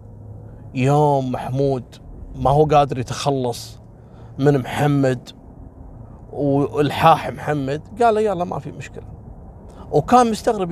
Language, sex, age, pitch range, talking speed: Arabic, male, 30-49, 115-180 Hz, 100 wpm